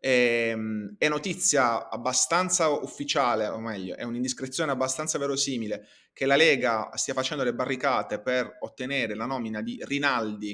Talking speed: 130 wpm